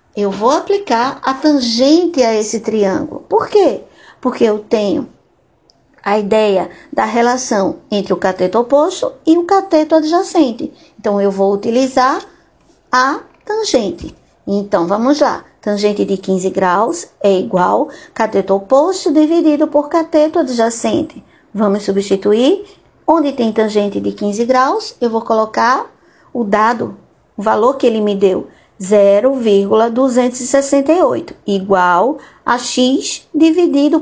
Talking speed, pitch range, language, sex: 125 wpm, 210-285 Hz, Portuguese, female